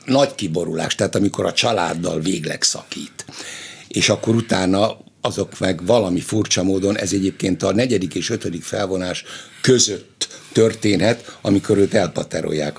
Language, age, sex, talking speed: Hungarian, 60-79, male, 130 wpm